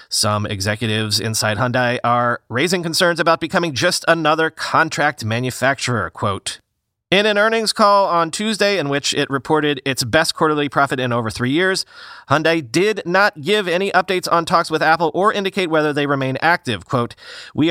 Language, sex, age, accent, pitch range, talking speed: English, male, 30-49, American, 135-180 Hz, 170 wpm